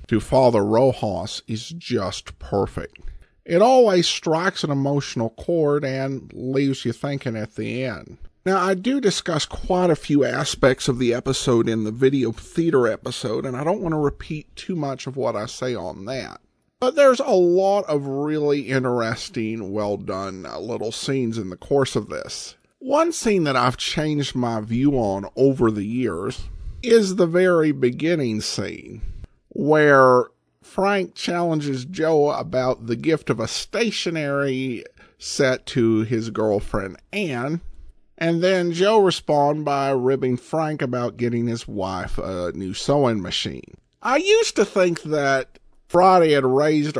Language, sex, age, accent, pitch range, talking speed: English, male, 50-69, American, 120-175 Hz, 155 wpm